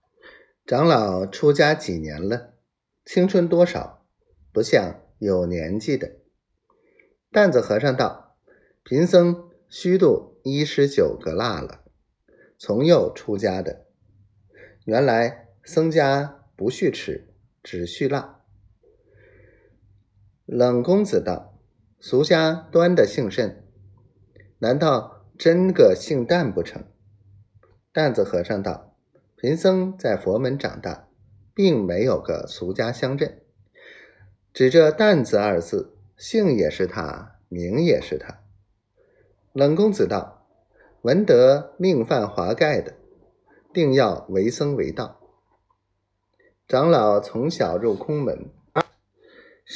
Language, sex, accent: Chinese, male, native